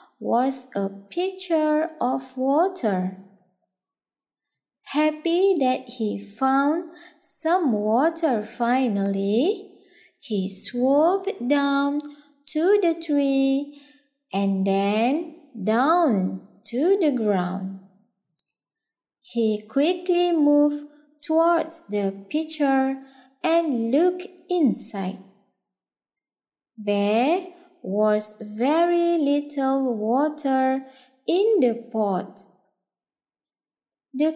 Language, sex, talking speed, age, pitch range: English, female, 75 wpm, 20-39, 215-305 Hz